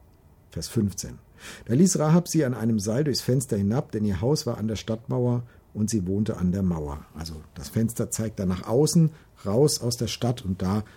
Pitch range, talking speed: 95-120 Hz, 210 wpm